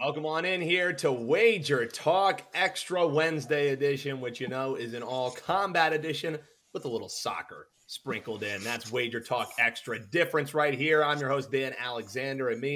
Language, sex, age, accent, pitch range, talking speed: English, male, 30-49, American, 130-160 Hz, 175 wpm